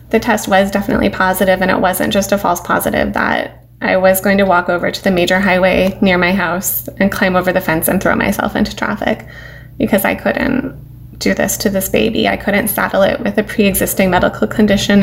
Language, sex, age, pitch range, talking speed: English, female, 20-39, 195-245 Hz, 210 wpm